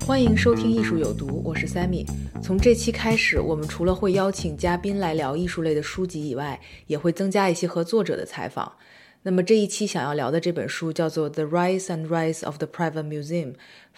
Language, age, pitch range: Chinese, 20-39, 155-185 Hz